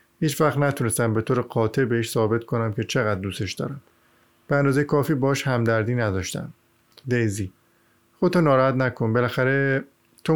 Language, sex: Persian, male